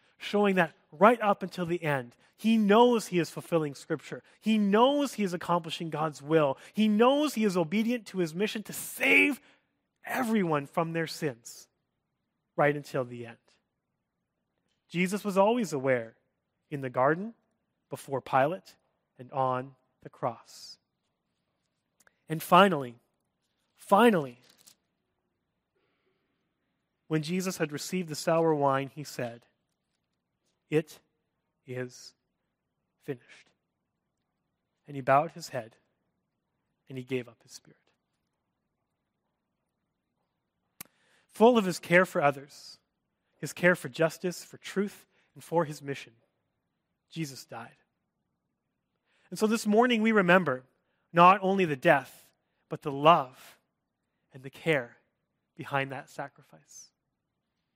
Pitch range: 140-195 Hz